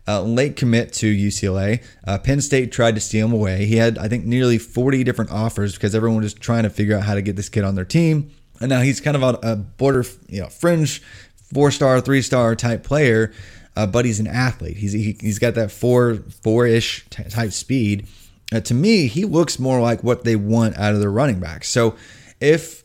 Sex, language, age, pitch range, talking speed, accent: male, English, 20-39, 100-125 Hz, 220 wpm, American